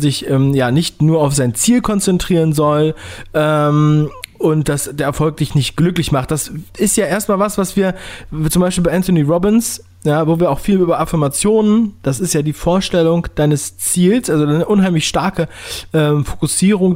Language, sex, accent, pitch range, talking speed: German, male, German, 135-175 Hz, 180 wpm